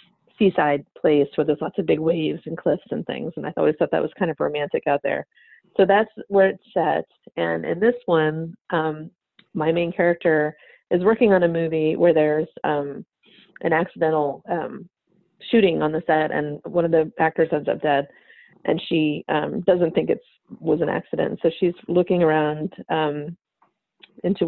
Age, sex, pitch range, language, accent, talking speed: 30-49, female, 155-185 Hz, English, American, 180 wpm